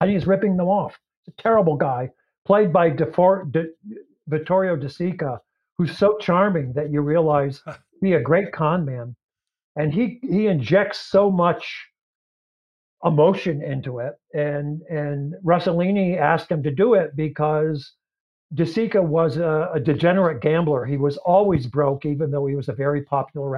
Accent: American